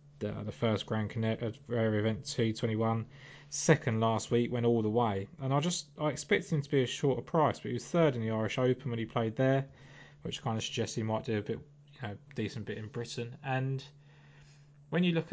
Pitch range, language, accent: 110-140 Hz, English, British